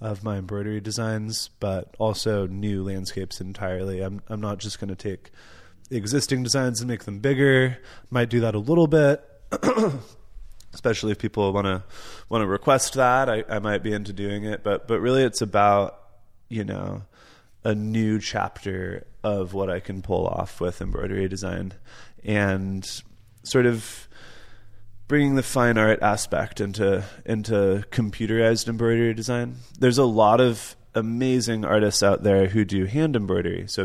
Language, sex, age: English, male, 20-39